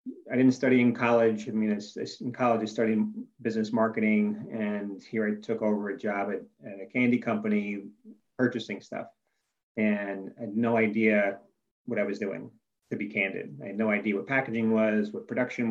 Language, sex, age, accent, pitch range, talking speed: English, male, 30-49, American, 105-125 Hz, 185 wpm